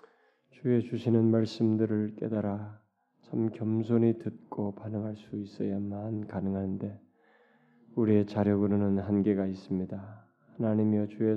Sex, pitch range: male, 105-115 Hz